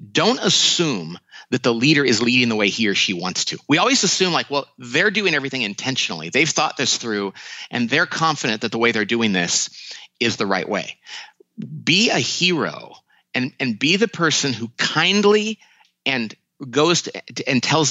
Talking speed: 180 wpm